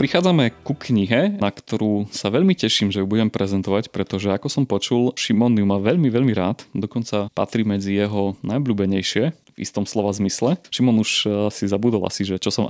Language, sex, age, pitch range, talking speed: Slovak, male, 30-49, 100-120 Hz, 185 wpm